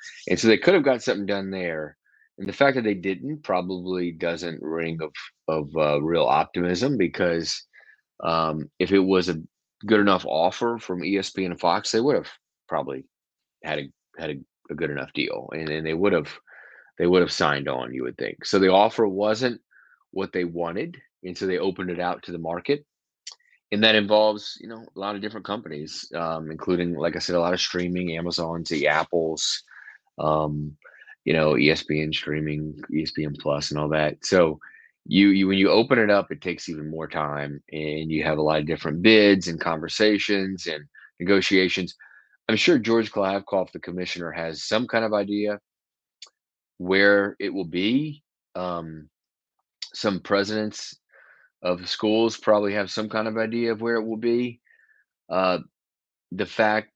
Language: English